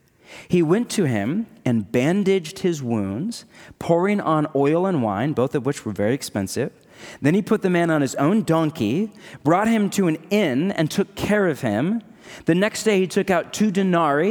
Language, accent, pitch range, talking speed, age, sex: English, American, 120-180 Hz, 195 wpm, 30-49, male